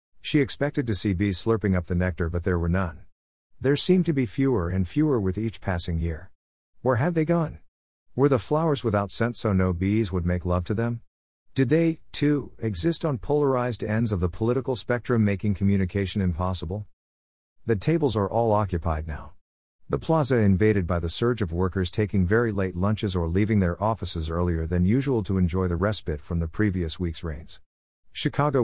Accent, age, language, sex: American, 50-69, English, male